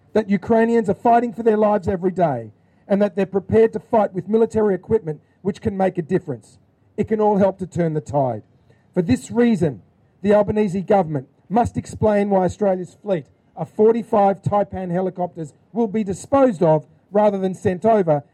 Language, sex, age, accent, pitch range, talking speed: Ukrainian, male, 40-59, Australian, 155-205 Hz, 175 wpm